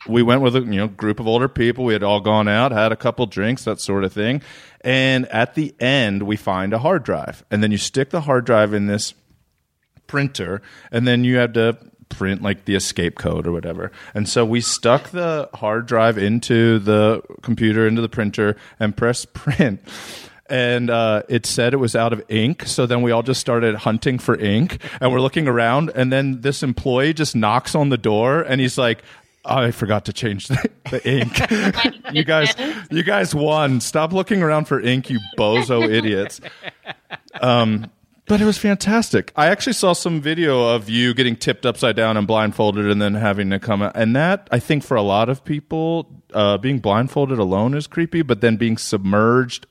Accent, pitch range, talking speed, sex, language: American, 110-135 Hz, 200 wpm, male, English